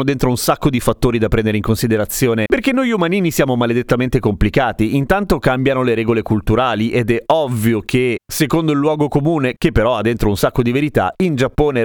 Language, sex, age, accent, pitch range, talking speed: Italian, male, 30-49, native, 115-155 Hz, 195 wpm